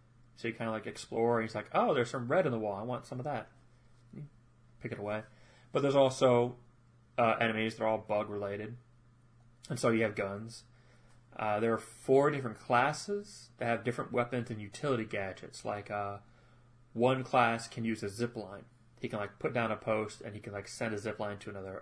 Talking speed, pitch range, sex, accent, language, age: 205 wpm, 105-125 Hz, male, American, English, 30-49